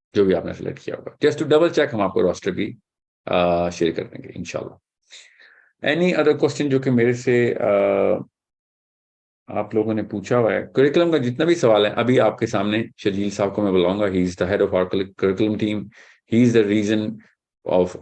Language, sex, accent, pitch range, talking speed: English, male, Indian, 90-110 Hz, 90 wpm